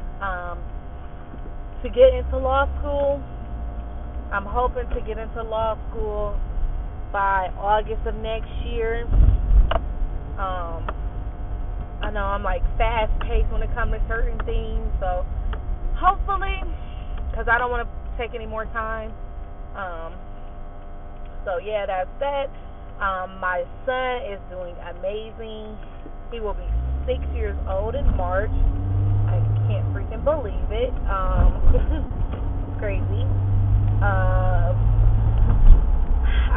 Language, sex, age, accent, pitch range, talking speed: English, female, 20-39, American, 70-110 Hz, 110 wpm